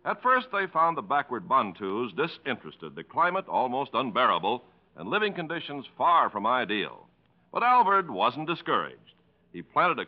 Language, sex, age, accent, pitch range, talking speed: English, male, 60-79, American, 150-215 Hz, 150 wpm